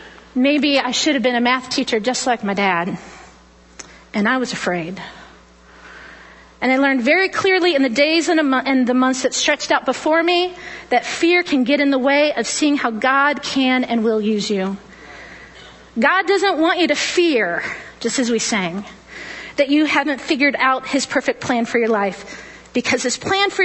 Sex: female